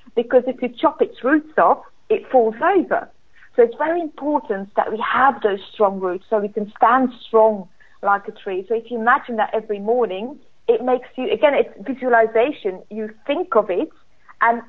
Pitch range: 200-255 Hz